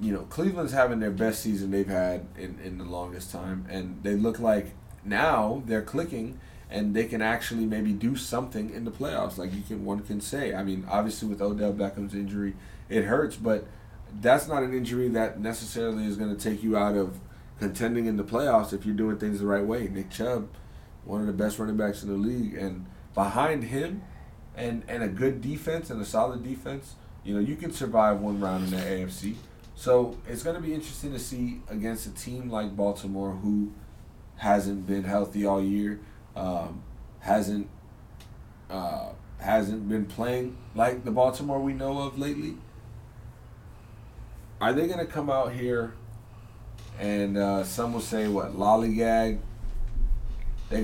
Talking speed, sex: 180 wpm, male